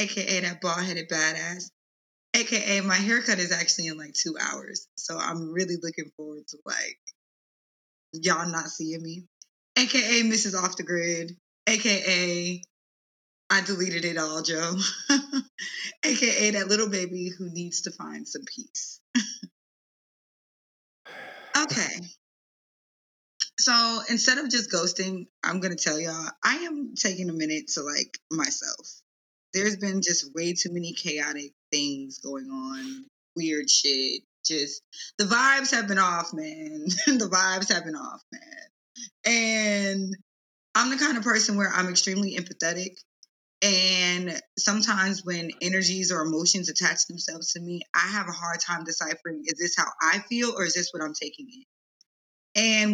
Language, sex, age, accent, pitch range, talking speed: English, female, 20-39, American, 170-215 Hz, 145 wpm